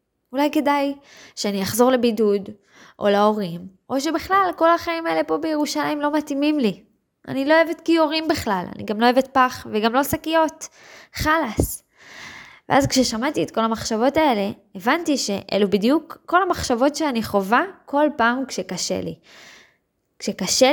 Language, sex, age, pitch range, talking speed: Hebrew, female, 20-39, 195-275 Hz, 140 wpm